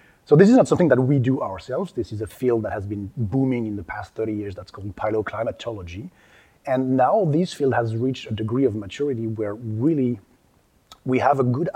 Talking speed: 210 wpm